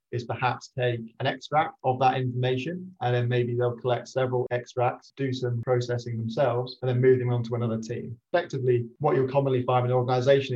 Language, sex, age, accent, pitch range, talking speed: English, male, 30-49, British, 115-130 Hz, 200 wpm